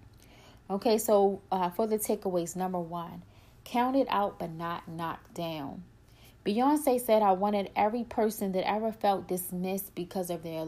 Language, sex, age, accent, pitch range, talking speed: English, female, 30-49, American, 165-200 Hz, 155 wpm